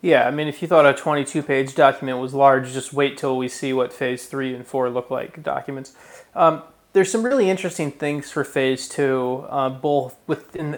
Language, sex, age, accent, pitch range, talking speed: English, male, 30-49, American, 140-165 Hz, 205 wpm